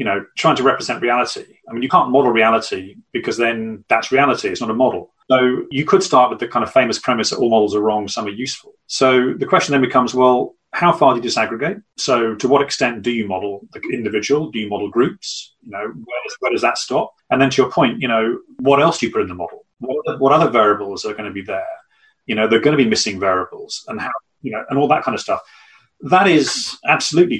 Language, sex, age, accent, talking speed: English, male, 30-49, British, 250 wpm